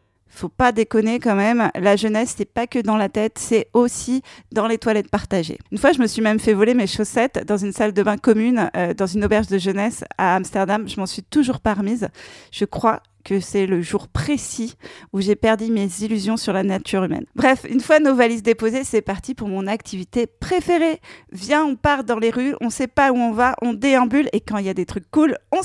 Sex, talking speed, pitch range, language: female, 235 wpm, 205-260 Hz, French